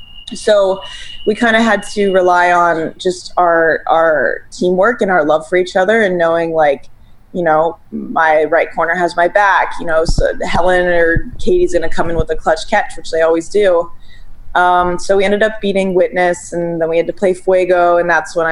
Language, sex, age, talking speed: English, female, 20-39, 205 wpm